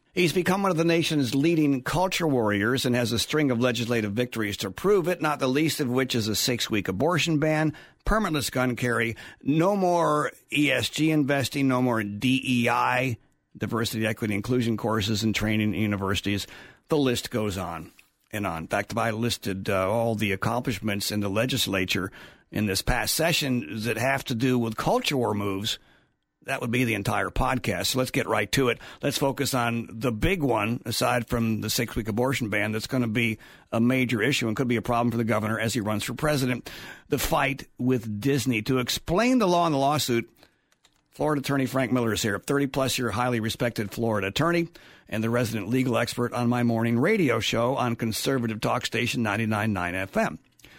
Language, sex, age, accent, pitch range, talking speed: English, male, 60-79, American, 110-135 Hz, 190 wpm